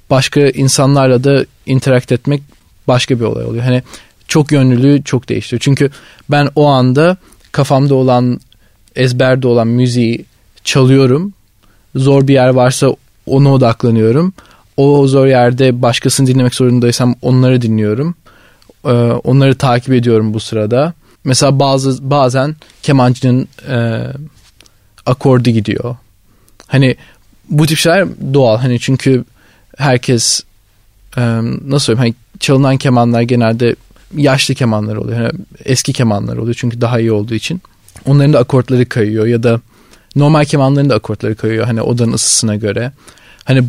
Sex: male